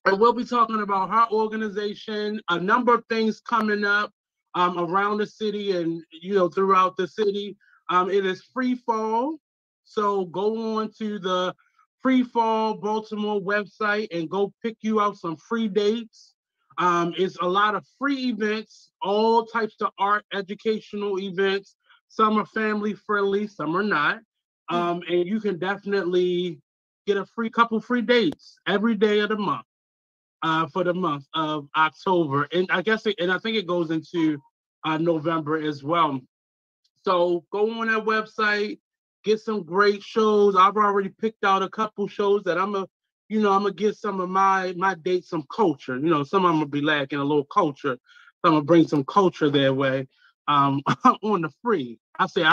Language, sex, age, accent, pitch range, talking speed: English, male, 20-39, American, 170-220 Hz, 180 wpm